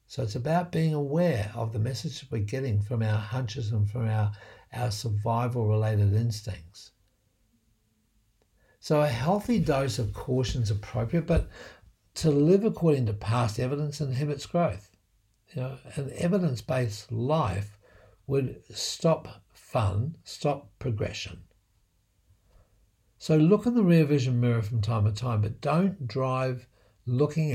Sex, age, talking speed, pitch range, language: male, 60-79, 130 wpm, 105-140 Hz, English